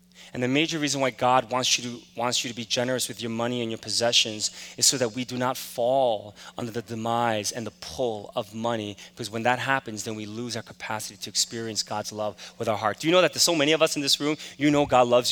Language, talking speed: English, 265 wpm